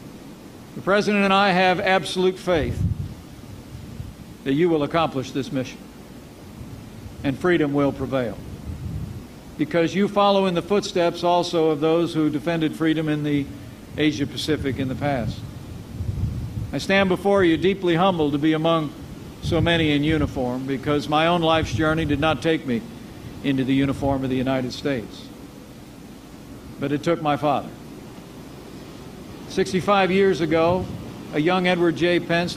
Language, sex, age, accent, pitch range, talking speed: English, male, 60-79, American, 135-170 Hz, 140 wpm